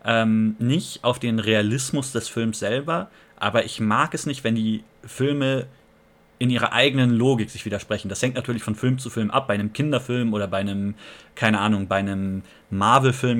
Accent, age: German, 30-49